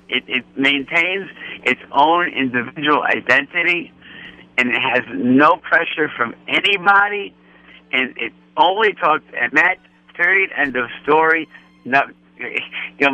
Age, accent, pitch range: 60-79, American, 110-155 Hz